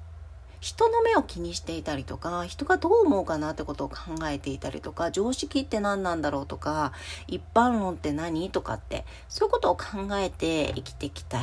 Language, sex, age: Japanese, female, 40-59